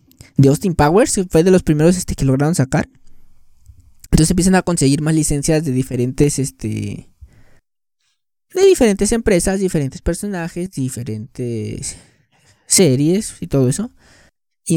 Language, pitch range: Spanish, 125-175 Hz